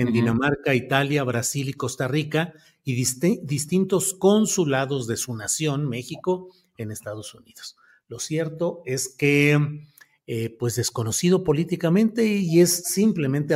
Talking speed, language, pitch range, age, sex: 125 wpm, Spanish, 125-170 Hz, 40-59, male